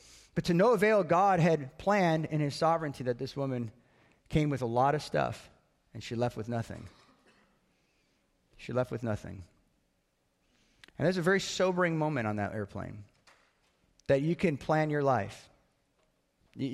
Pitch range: 120-155 Hz